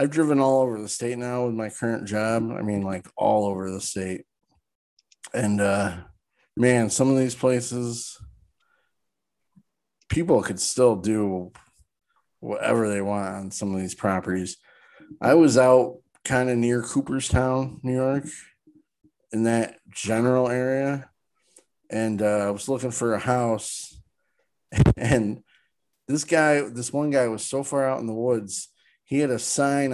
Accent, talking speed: American, 150 wpm